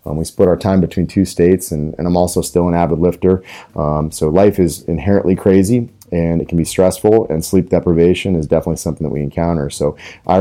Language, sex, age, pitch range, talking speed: English, male, 30-49, 80-100 Hz, 220 wpm